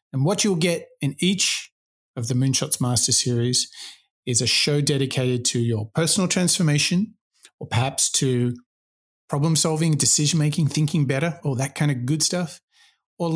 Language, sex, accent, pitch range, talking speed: English, male, Australian, 135-170 Hz, 155 wpm